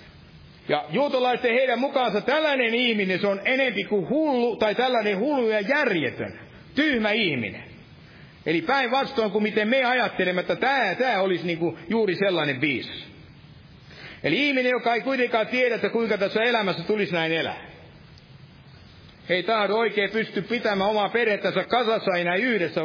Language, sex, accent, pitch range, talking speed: Finnish, male, native, 180-245 Hz, 145 wpm